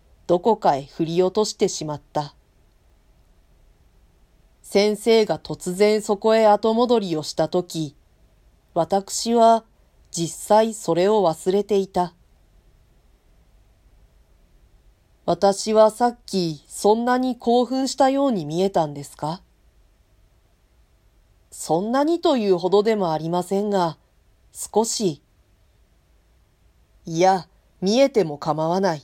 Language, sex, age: Japanese, female, 40-59